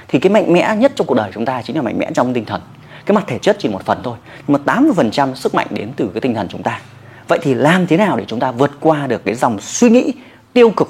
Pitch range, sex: 140-230 Hz, male